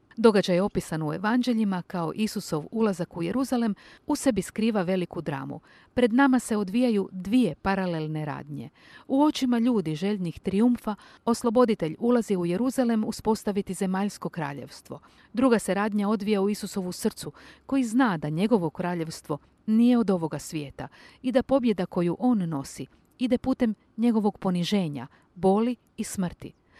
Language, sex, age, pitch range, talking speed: Croatian, female, 50-69, 175-245 Hz, 140 wpm